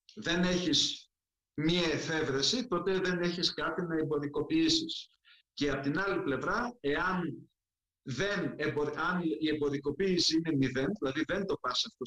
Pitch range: 135-165 Hz